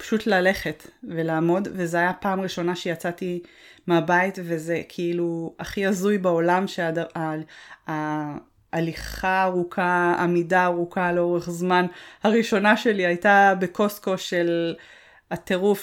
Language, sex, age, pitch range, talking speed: Hebrew, female, 20-39, 175-210 Hz, 105 wpm